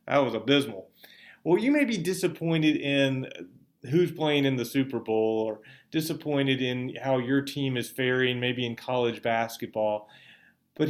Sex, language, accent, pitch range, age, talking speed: male, English, American, 120-150 Hz, 30-49, 155 wpm